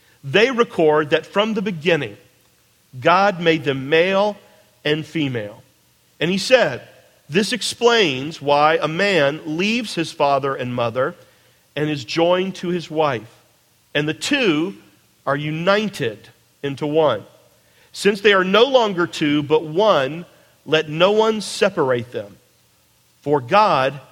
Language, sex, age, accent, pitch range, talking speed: English, male, 40-59, American, 145-210 Hz, 130 wpm